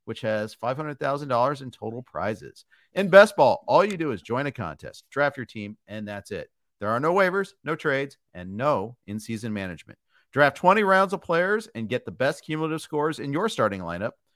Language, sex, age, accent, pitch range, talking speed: English, male, 50-69, American, 115-160 Hz, 200 wpm